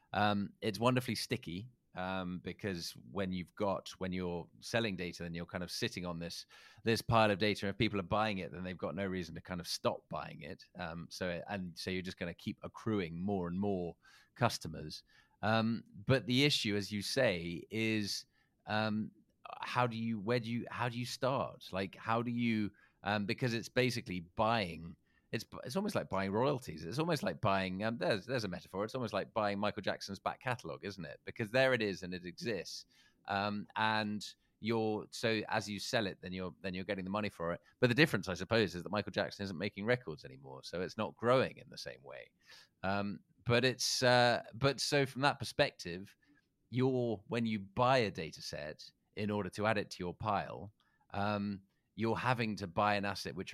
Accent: British